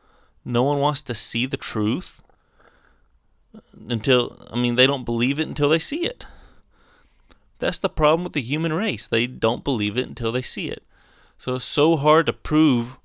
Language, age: English, 30-49